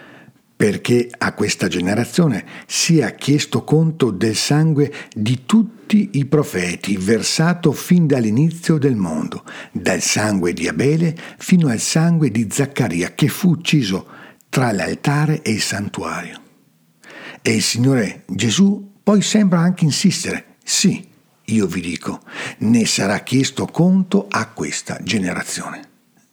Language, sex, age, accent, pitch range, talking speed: Italian, male, 60-79, native, 115-170 Hz, 125 wpm